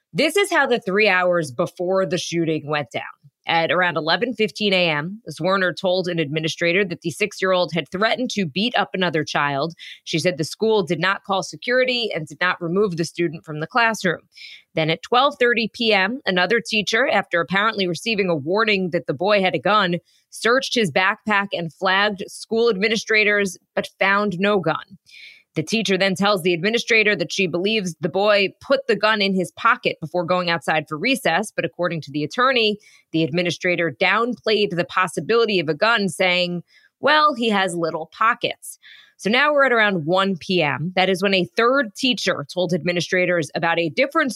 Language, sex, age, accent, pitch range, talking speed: English, female, 20-39, American, 170-215 Hz, 180 wpm